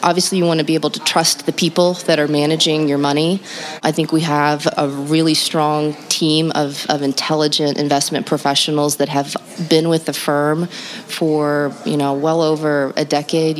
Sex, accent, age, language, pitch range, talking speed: female, American, 30-49, English, 145-160 Hz, 180 wpm